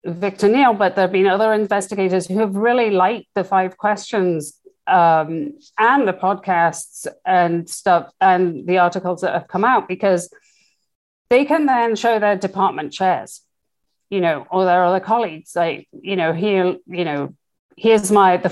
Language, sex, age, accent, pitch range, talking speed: English, female, 40-59, British, 165-195 Hz, 165 wpm